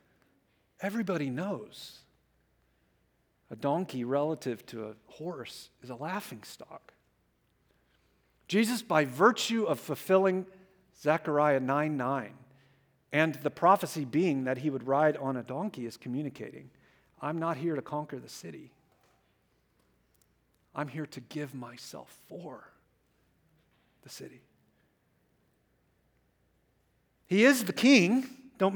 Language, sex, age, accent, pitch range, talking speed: English, male, 50-69, American, 140-200 Hz, 110 wpm